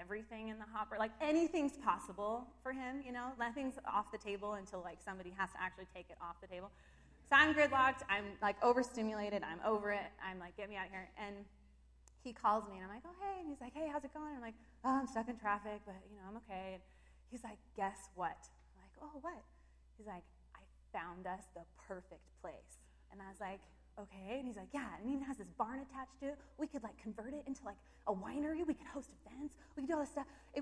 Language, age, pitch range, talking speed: English, 20-39, 195-285 Hz, 240 wpm